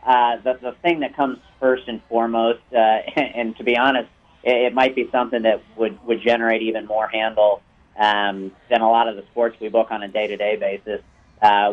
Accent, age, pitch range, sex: American, 40-59, 105-125 Hz, male